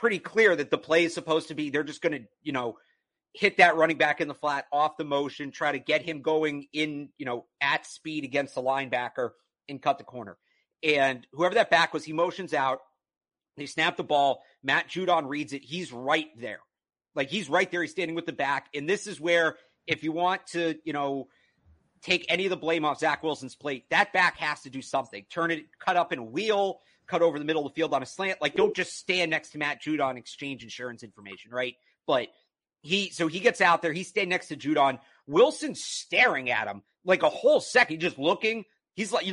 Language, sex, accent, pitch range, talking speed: English, male, American, 145-185 Hz, 225 wpm